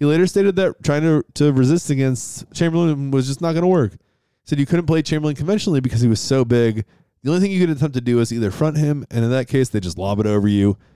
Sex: male